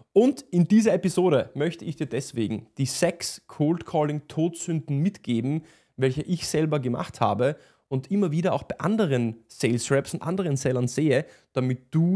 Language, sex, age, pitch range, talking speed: German, male, 20-39, 125-160 Hz, 165 wpm